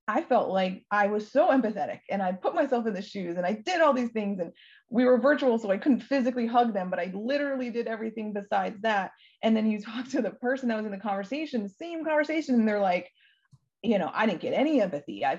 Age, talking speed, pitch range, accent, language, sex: 20-39, 240 wpm, 175-230 Hz, American, English, female